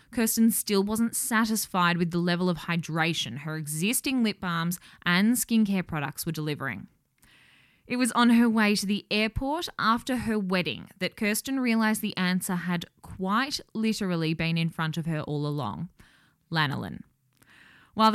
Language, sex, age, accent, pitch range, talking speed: English, female, 10-29, Australian, 165-215 Hz, 150 wpm